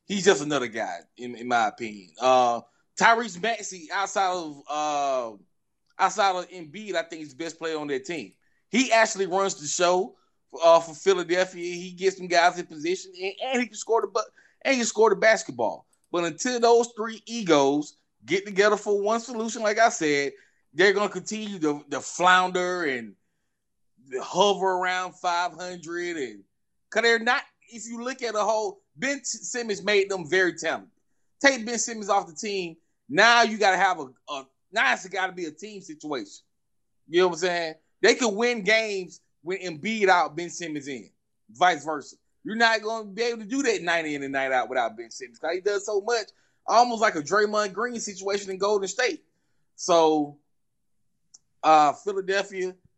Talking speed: 185 wpm